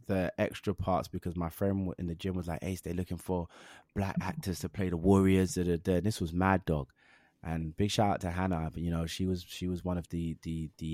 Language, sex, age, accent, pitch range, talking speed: English, male, 20-39, British, 85-110 Hz, 250 wpm